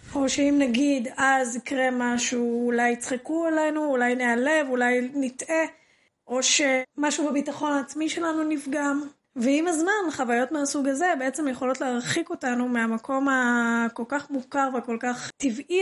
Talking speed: 135 wpm